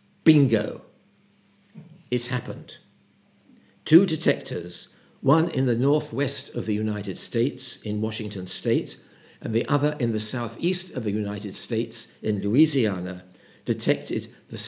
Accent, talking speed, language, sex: British, 125 wpm, English, male